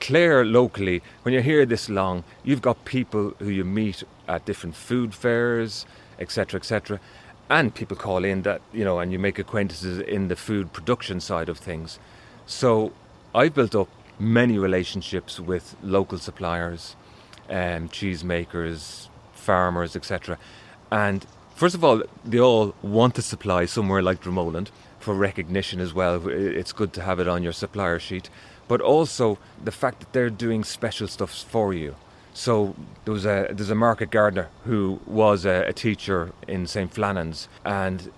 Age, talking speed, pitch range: 30-49, 165 wpm, 95-110 Hz